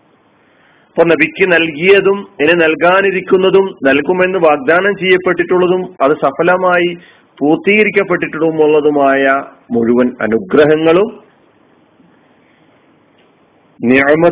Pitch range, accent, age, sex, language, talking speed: 135-180 Hz, native, 40-59, male, Malayalam, 55 wpm